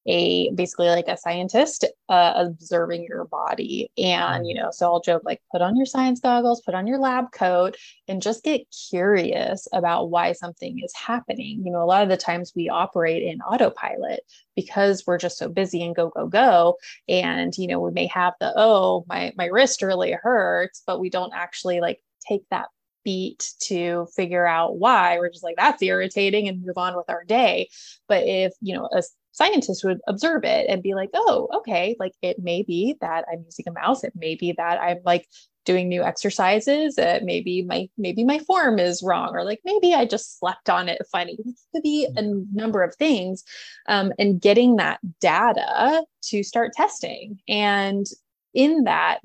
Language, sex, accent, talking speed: English, female, American, 195 wpm